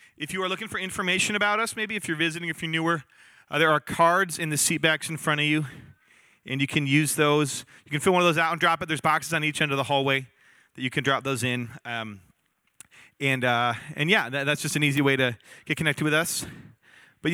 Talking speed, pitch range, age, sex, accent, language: 250 wpm, 145-180 Hz, 30-49, male, American, English